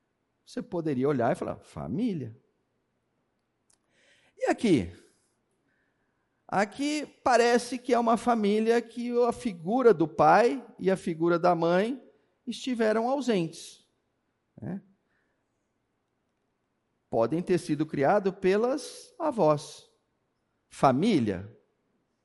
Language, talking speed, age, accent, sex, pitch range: Portuguese, 90 wpm, 50-69, Brazilian, male, 160-230 Hz